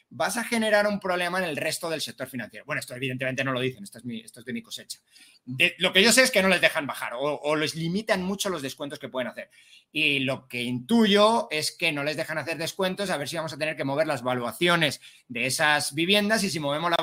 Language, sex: Spanish, male